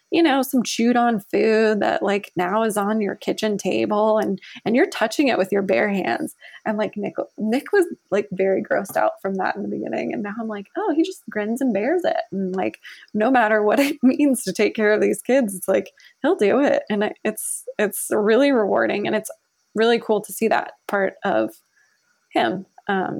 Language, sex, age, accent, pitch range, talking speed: English, female, 20-39, American, 200-270 Hz, 210 wpm